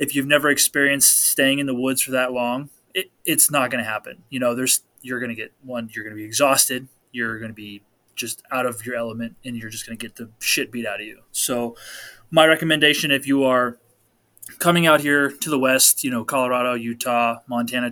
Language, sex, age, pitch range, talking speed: English, male, 20-39, 120-140 Hz, 225 wpm